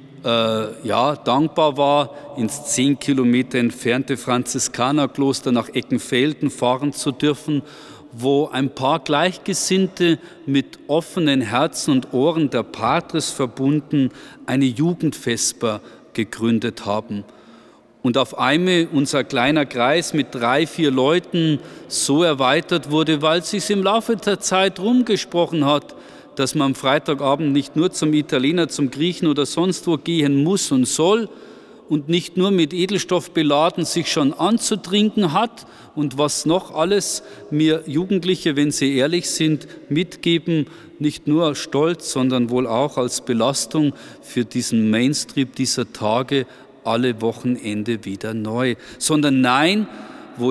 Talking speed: 125 wpm